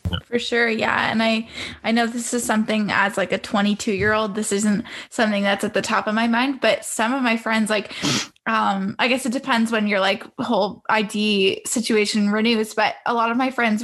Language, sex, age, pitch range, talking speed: English, female, 10-29, 215-255 Hz, 215 wpm